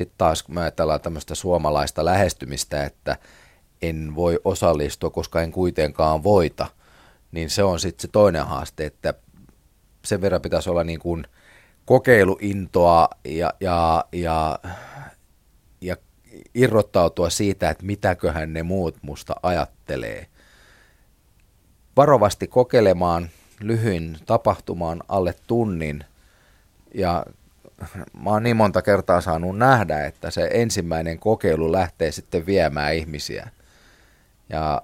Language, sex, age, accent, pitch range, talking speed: Finnish, male, 30-49, native, 75-90 Hz, 110 wpm